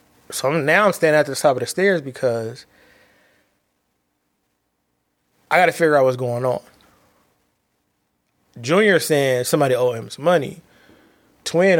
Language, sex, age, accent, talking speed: English, male, 20-39, American, 135 wpm